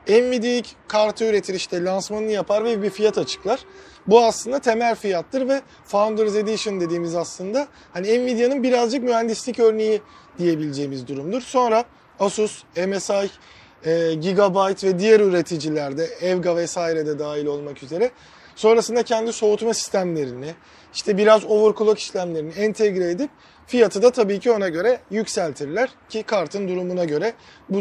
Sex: male